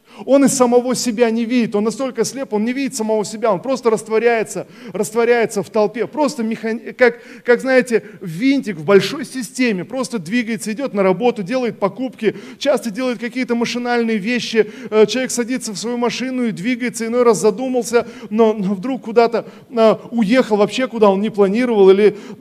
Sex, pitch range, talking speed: male, 170-235 Hz, 165 wpm